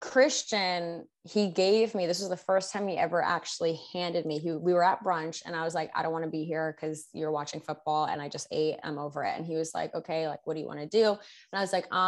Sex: female